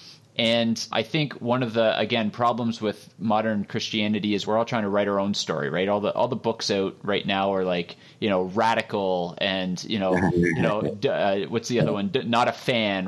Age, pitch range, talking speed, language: 30-49, 105-125 Hz, 215 wpm, English